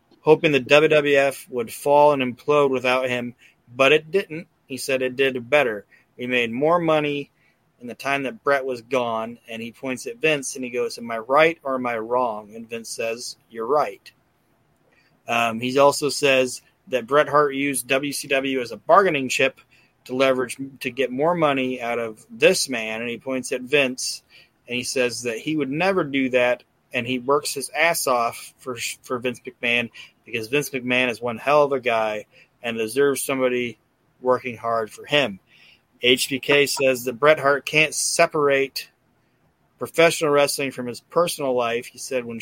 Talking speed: 180 wpm